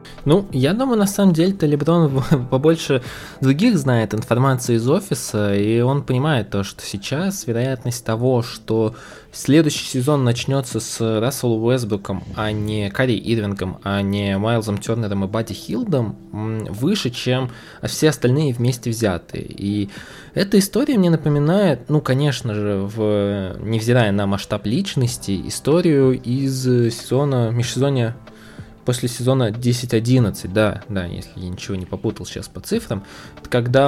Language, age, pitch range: Russian, 20-39, 110-140 Hz